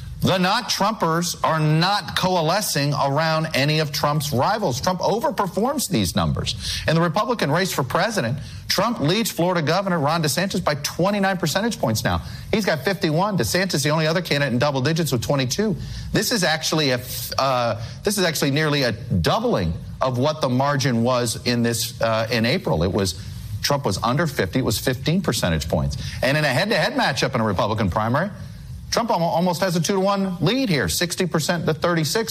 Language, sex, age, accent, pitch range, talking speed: English, male, 40-59, American, 120-175 Hz, 175 wpm